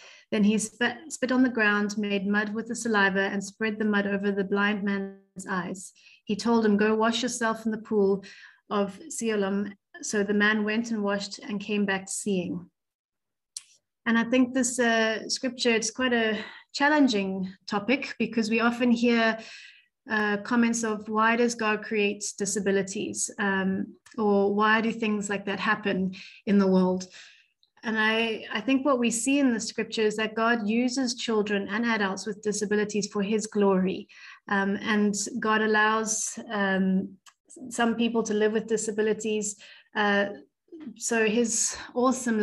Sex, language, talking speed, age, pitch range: female, English, 160 wpm, 30-49, 200-230 Hz